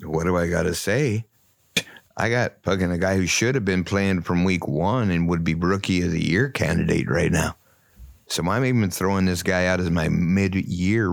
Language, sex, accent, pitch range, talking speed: English, male, American, 90-115 Hz, 220 wpm